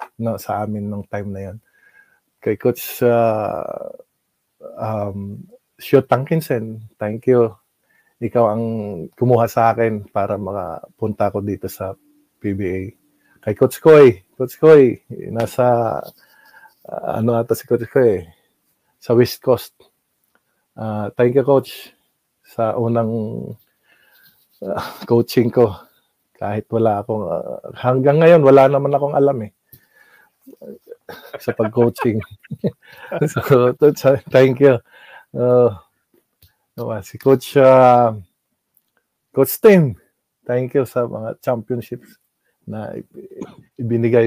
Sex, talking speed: male, 105 wpm